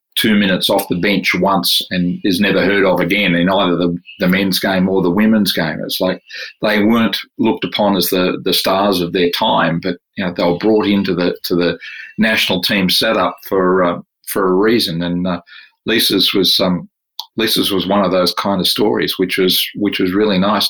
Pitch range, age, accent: 90-100 Hz, 40-59, Australian